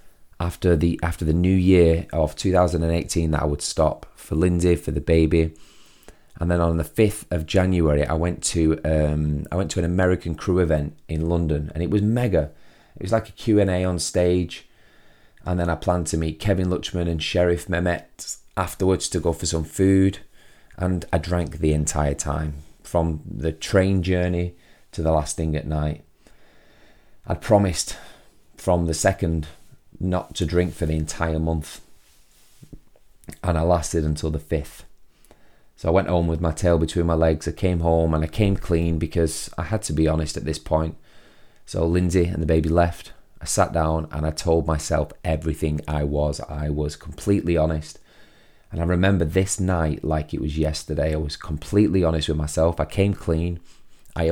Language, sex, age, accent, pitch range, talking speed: English, male, 30-49, British, 80-90 Hz, 180 wpm